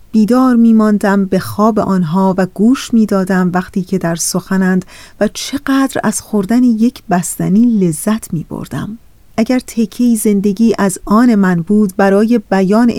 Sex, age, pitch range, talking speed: female, 30-49, 195-235 Hz, 140 wpm